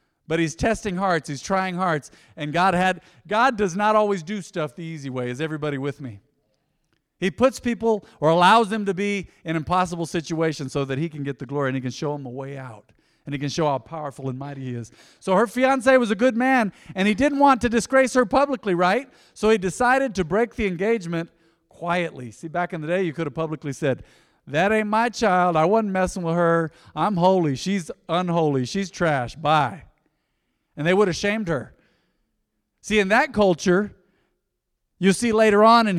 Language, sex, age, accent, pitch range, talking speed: English, male, 50-69, American, 155-215 Hz, 205 wpm